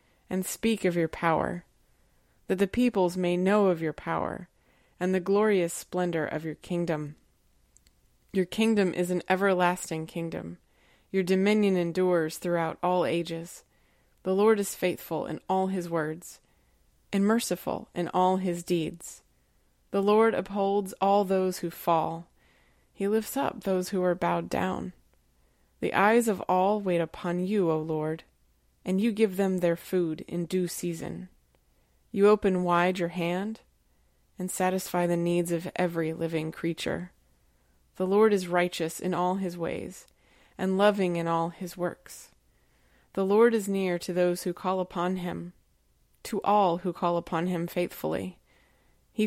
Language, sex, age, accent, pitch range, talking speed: English, female, 20-39, American, 165-190 Hz, 150 wpm